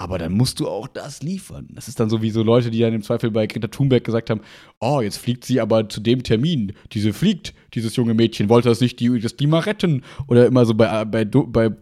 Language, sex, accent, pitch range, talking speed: German, male, German, 115-135 Hz, 240 wpm